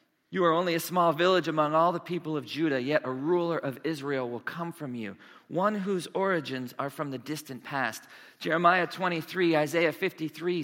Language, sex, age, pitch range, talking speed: English, male, 40-59, 150-190 Hz, 185 wpm